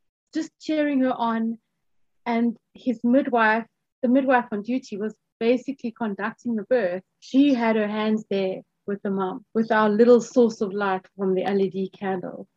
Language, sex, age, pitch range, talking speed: English, female, 30-49, 200-260 Hz, 160 wpm